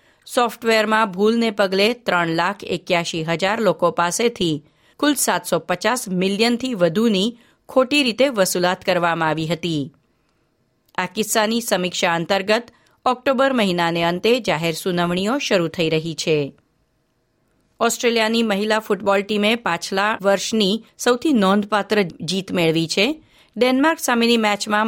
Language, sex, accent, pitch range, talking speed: Gujarati, female, native, 175-230 Hz, 115 wpm